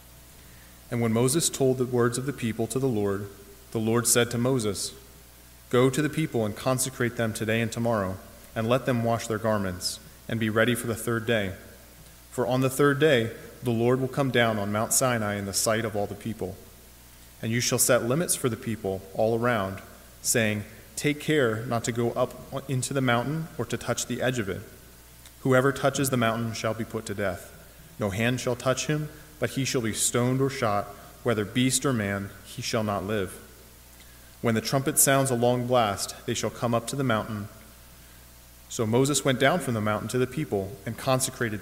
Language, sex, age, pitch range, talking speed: English, male, 30-49, 100-125 Hz, 205 wpm